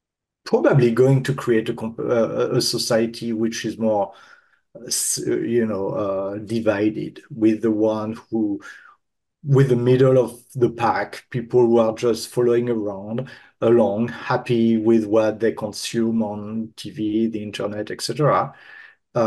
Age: 40-59